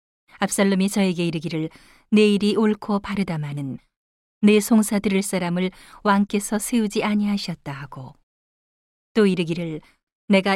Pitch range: 170-215 Hz